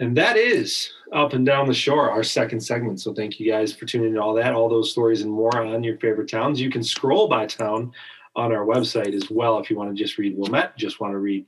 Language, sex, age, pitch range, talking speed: English, male, 40-59, 105-130 Hz, 255 wpm